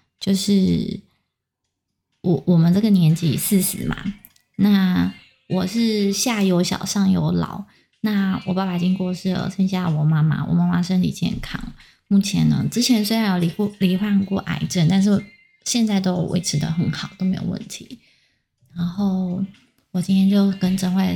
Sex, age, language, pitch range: female, 20-39, Chinese, 170-195 Hz